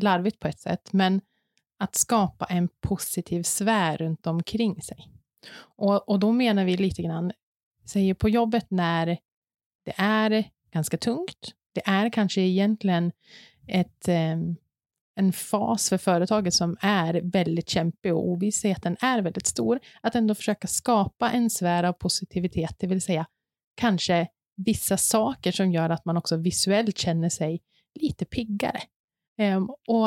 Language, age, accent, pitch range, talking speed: Swedish, 30-49, native, 175-215 Hz, 155 wpm